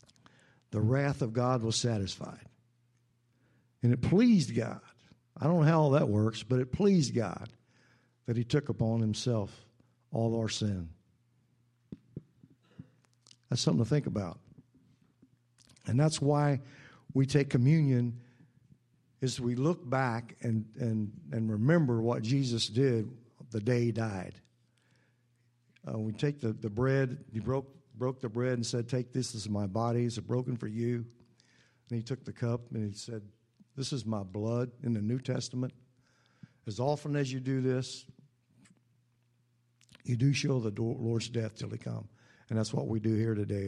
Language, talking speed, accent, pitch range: English, 160 wpm, American, 115-135 Hz